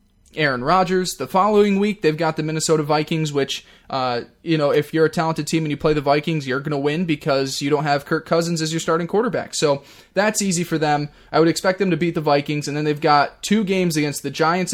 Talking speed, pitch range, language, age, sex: 245 wpm, 140-165 Hz, English, 20-39, male